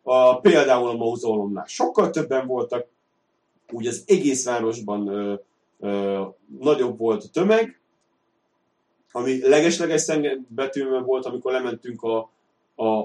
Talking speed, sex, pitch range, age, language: 115 wpm, male, 105-130 Hz, 30-49, Hungarian